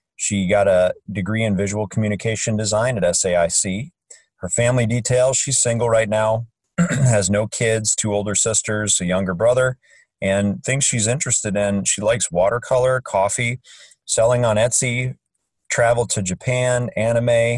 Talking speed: 145 wpm